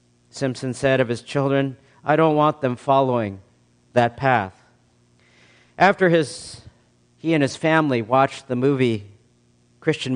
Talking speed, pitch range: 130 wpm, 110-155 Hz